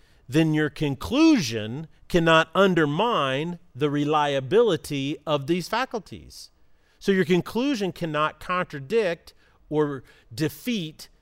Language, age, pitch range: English, 40-59, 125-180 Hz